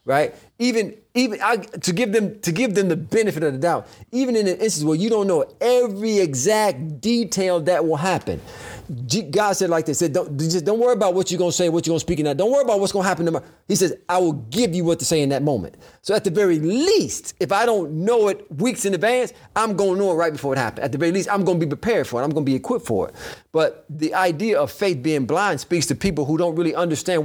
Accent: American